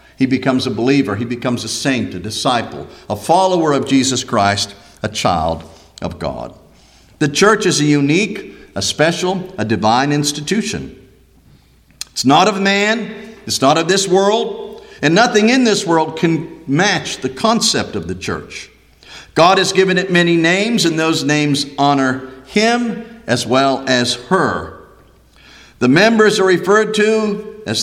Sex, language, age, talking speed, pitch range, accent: male, English, 50-69, 155 wpm, 110-180 Hz, American